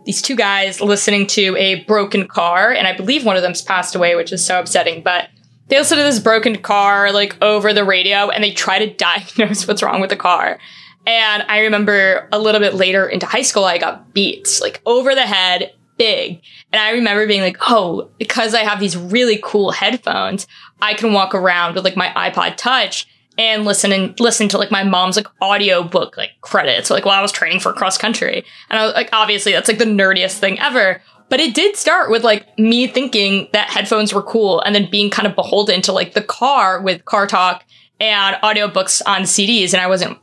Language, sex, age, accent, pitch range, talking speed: English, female, 20-39, American, 190-220 Hz, 215 wpm